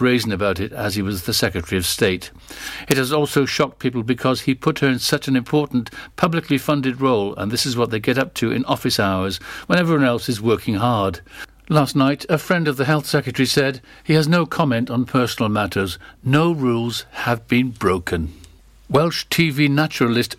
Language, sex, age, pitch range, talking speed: English, male, 60-79, 115-145 Hz, 195 wpm